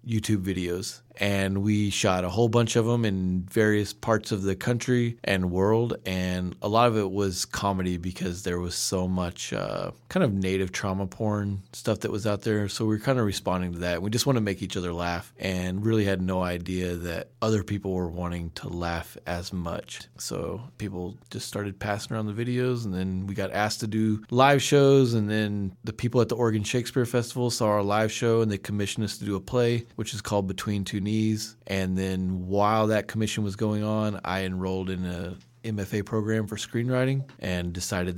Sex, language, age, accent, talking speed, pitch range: male, English, 30-49, American, 210 wpm, 90-110 Hz